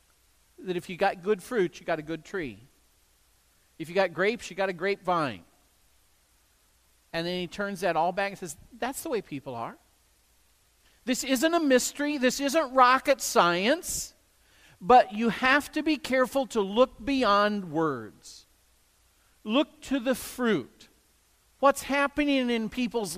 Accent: American